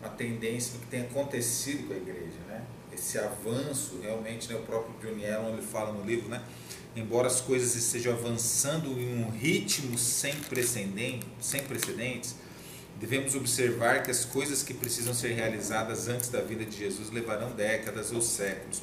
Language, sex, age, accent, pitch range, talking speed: Portuguese, male, 40-59, Brazilian, 115-140 Hz, 155 wpm